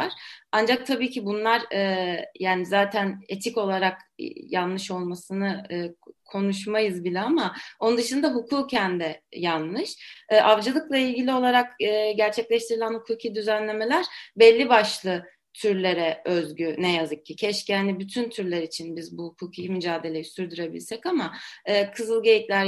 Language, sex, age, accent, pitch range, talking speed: Turkish, female, 30-49, native, 185-245 Hz, 125 wpm